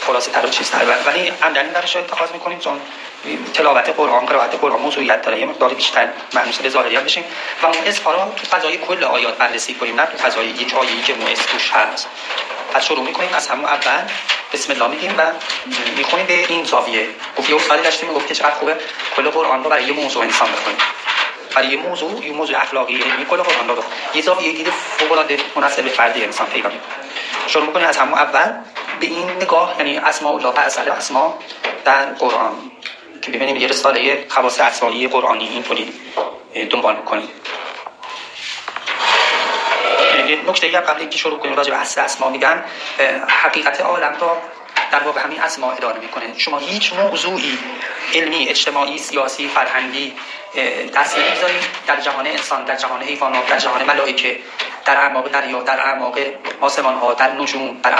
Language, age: Persian, 30-49